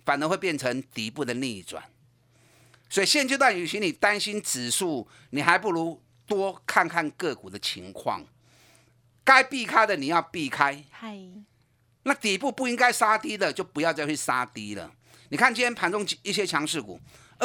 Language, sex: Chinese, male